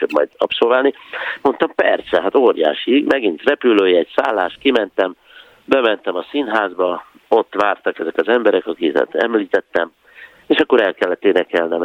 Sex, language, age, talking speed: male, Hungarian, 50-69, 125 wpm